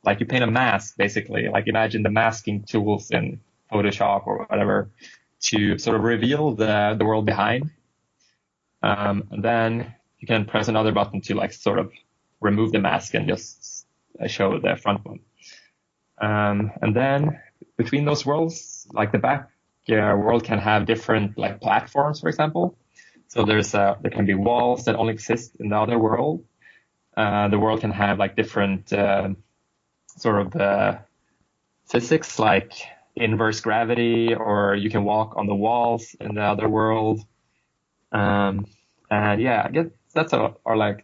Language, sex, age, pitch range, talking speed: English, male, 20-39, 100-115 Hz, 160 wpm